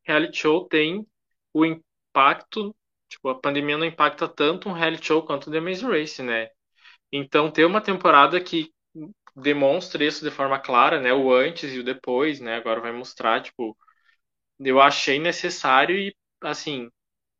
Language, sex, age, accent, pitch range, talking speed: Portuguese, male, 20-39, Brazilian, 125-160 Hz, 160 wpm